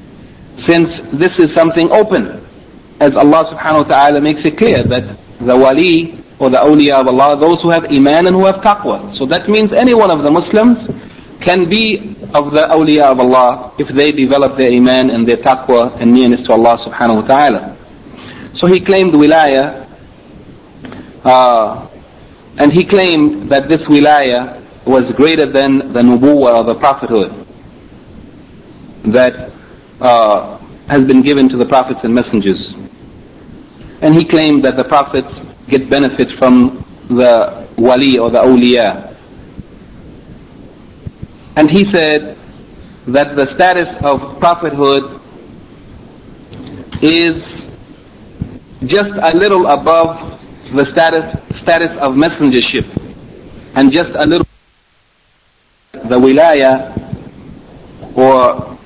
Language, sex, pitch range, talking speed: English, male, 125-165 Hz, 130 wpm